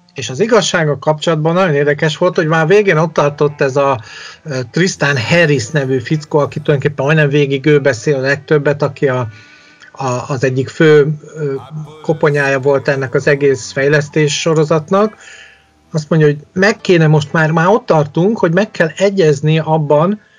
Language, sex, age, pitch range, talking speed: Hungarian, male, 40-59, 145-180 Hz, 160 wpm